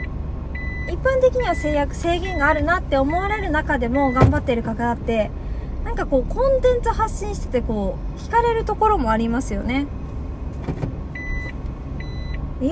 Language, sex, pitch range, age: Japanese, female, 245-350 Hz, 20-39